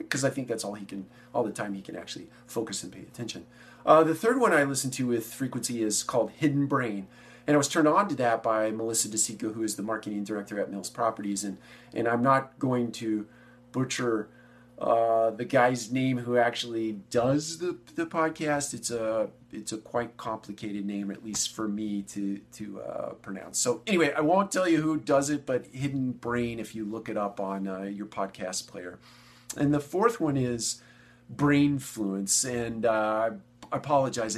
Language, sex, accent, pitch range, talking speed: English, male, American, 110-130 Hz, 195 wpm